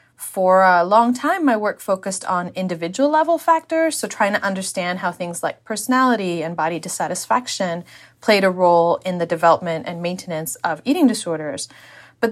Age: 30-49